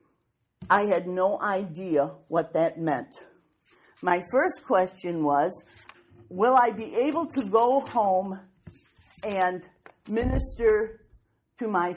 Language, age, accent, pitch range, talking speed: English, 50-69, American, 165-220 Hz, 110 wpm